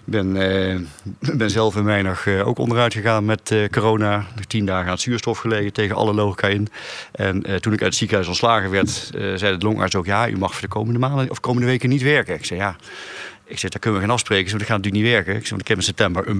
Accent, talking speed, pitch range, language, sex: Dutch, 275 wpm, 95-110 Hz, Dutch, male